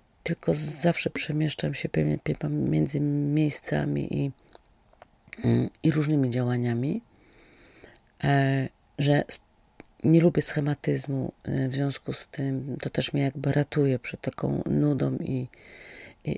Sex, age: female, 30-49